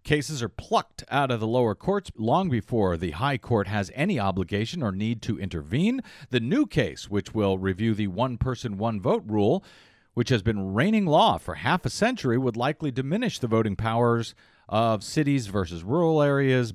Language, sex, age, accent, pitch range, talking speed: English, male, 40-59, American, 105-140 Hz, 185 wpm